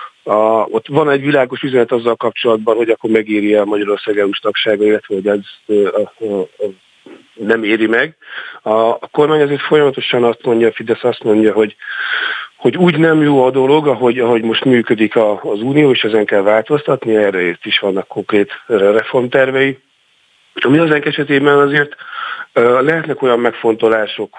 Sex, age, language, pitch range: male, 40-59, Hungarian, 110-135 Hz